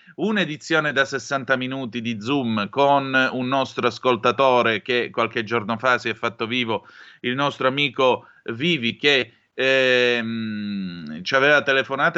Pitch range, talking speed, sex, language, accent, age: 115-135 Hz, 135 wpm, male, Italian, native, 30-49